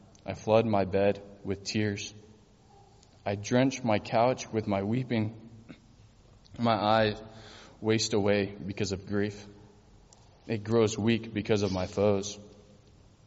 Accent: American